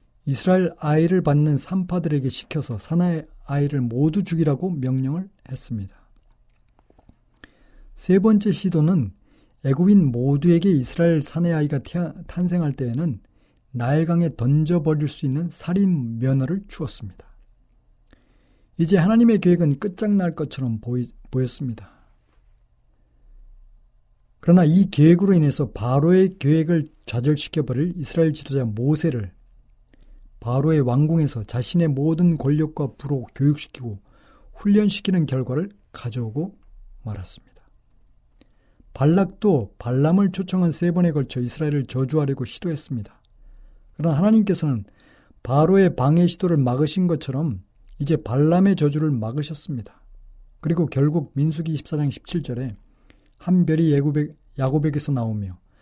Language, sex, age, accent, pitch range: Korean, male, 40-59, native, 130-170 Hz